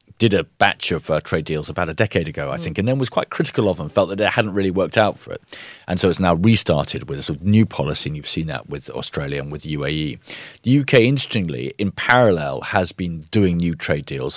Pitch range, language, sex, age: 80-110 Hz, English, male, 40-59